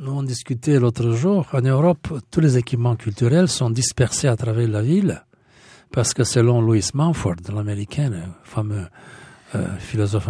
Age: 60-79